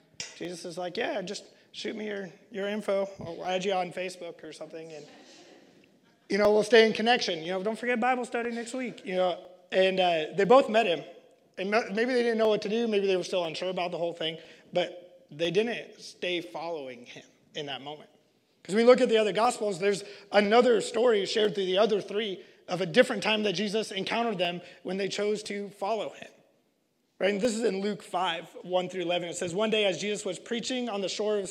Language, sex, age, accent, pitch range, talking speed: English, male, 20-39, American, 180-220 Hz, 230 wpm